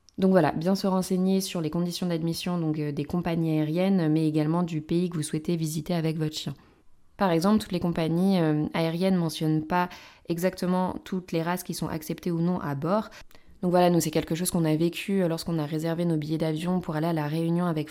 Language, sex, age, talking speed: French, female, 20-39, 215 wpm